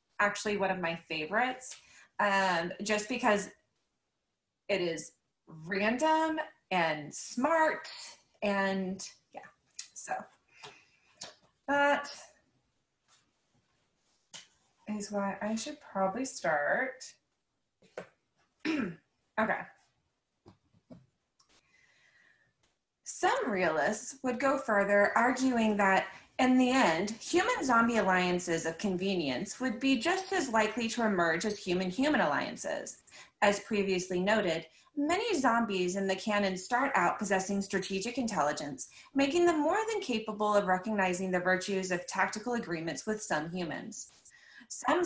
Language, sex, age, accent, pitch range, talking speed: English, female, 20-39, American, 185-255 Hz, 105 wpm